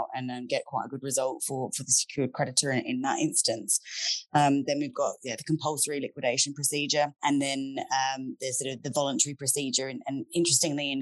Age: 20-39